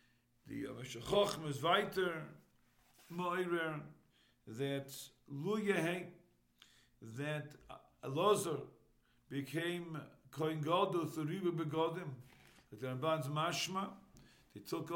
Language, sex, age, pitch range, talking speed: English, male, 50-69, 140-175 Hz, 80 wpm